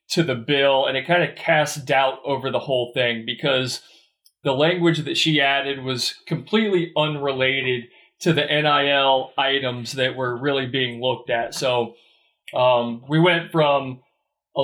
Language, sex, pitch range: English, male, 130-155 Hz